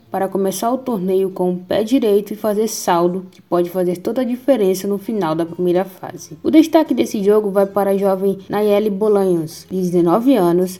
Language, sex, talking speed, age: Portuguese, female, 190 wpm, 10-29